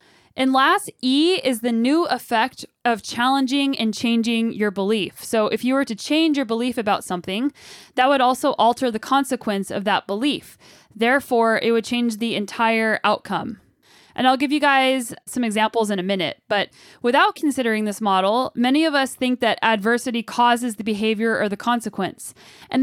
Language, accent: English, American